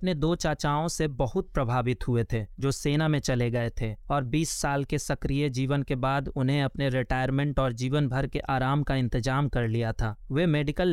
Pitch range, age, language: 135-155 Hz, 30-49, Hindi